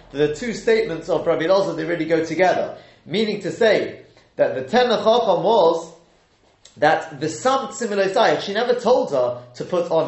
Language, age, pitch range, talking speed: English, 30-49, 155-220 Hz, 165 wpm